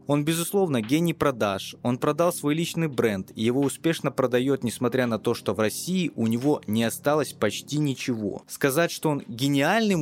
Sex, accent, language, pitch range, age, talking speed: male, native, Russian, 120-160 Hz, 20-39, 170 wpm